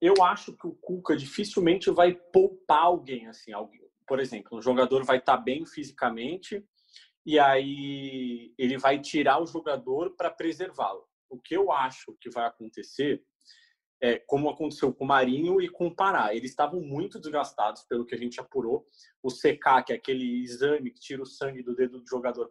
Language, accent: Portuguese, Brazilian